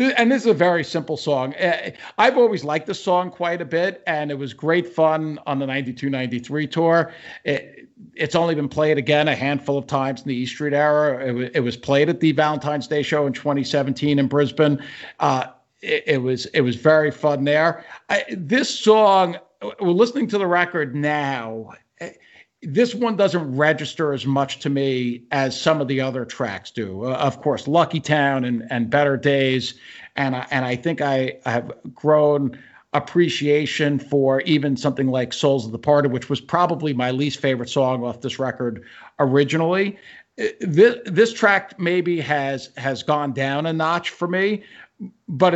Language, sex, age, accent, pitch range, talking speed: English, male, 50-69, American, 135-170 Hz, 180 wpm